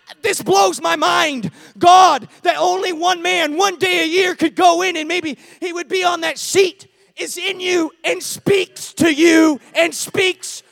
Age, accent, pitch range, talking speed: 30-49, American, 270-335 Hz, 185 wpm